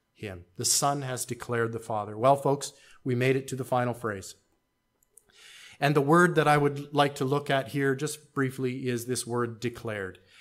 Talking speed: 190 wpm